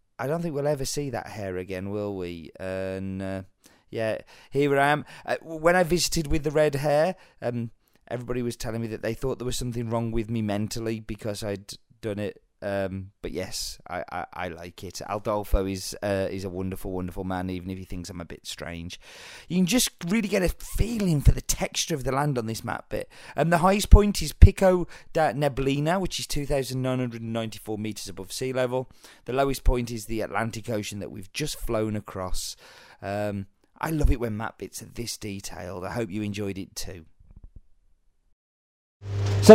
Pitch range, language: 100-145 Hz, English